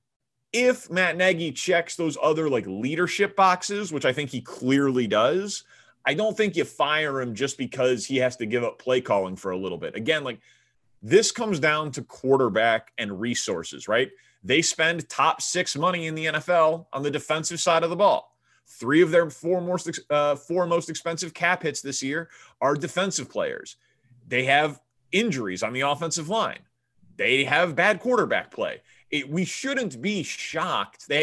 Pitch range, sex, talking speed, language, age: 135-185 Hz, male, 175 wpm, English, 30-49